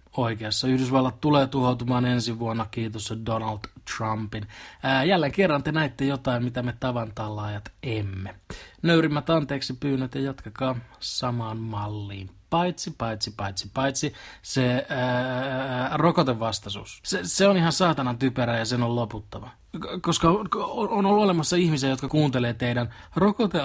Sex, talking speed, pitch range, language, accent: male, 135 wpm, 115-150 Hz, Finnish, native